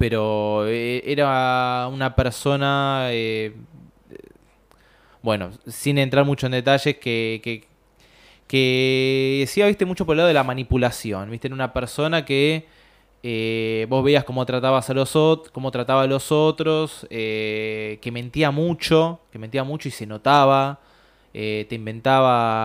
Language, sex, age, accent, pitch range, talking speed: Spanish, male, 20-39, Argentinian, 115-145 Hz, 150 wpm